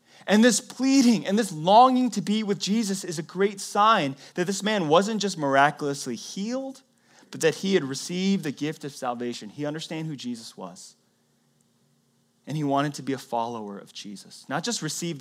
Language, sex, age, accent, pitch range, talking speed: English, male, 30-49, American, 120-190 Hz, 185 wpm